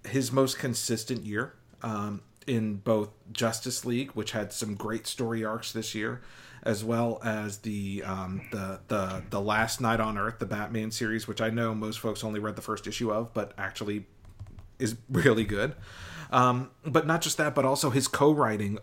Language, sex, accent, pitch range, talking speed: English, male, American, 105-120 Hz, 180 wpm